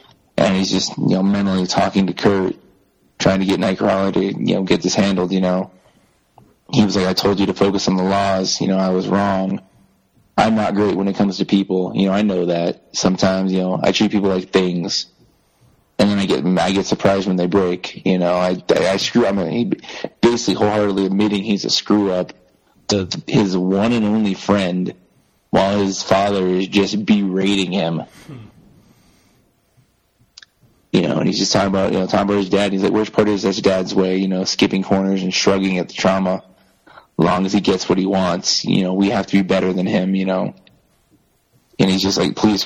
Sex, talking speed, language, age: male, 210 wpm, English, 20-39